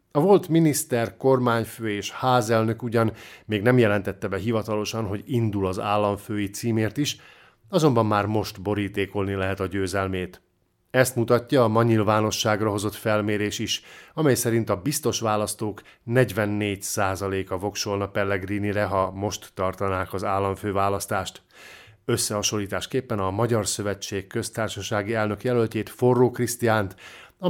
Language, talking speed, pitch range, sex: Hungarian, 120 wpm, 100-115 Hz, male